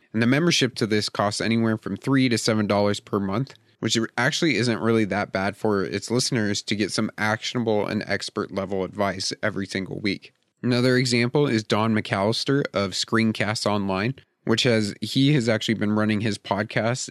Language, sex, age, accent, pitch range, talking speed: English, male, 30-49, American, 105-120 Hz, 175 wpm